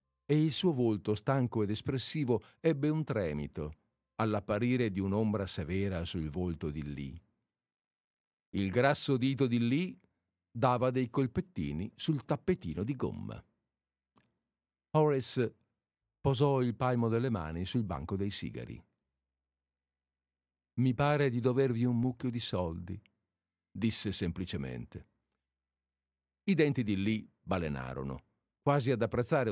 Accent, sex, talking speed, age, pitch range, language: native, male, 120 wpm, 50-69, 85-125 Hz, Italian